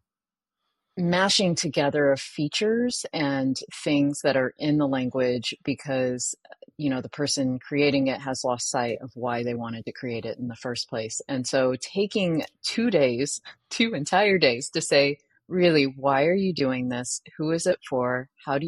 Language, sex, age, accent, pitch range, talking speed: English, female, 30-49, American, 125-145 Hz, 175 wpm